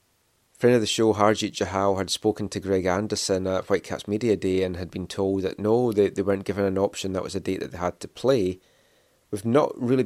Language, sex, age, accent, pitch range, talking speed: English, male, 30-49, British, 95-110 Hz, 235 wpm